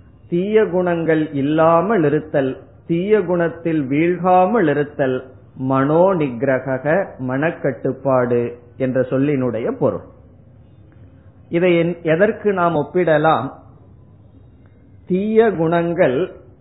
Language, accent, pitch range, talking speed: Tamil, native, 130-170 Hz, 65 wpm